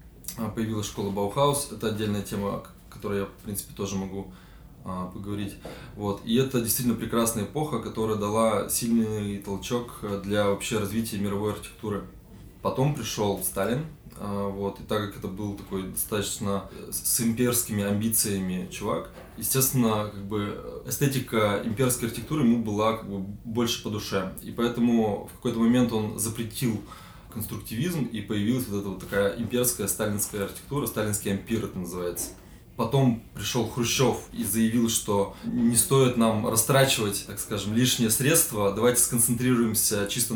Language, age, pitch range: Russian, 20-39, 100-120 Hz